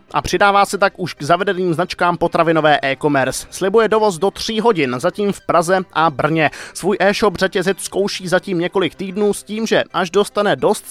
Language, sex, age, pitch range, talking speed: Czech, male, 20-39, 155-200 Hz, 180 wpm